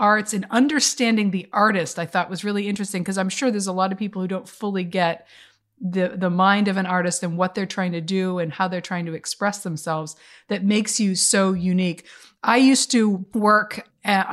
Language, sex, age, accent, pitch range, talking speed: English, female, 40-59, American, 180-210 Hz, 215 wpm